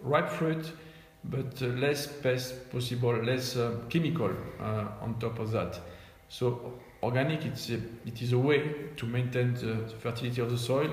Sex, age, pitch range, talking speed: male, 50-69, 110-140 Hz, 170 wpm